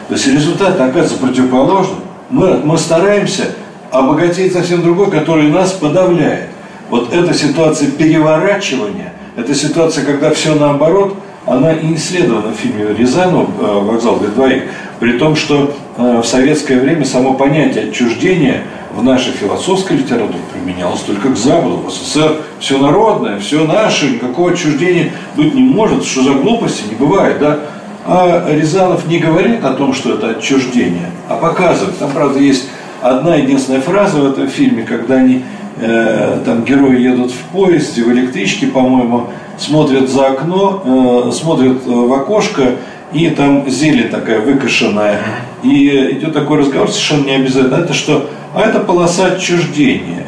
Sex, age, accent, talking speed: male, 50-69, native, 145 wpm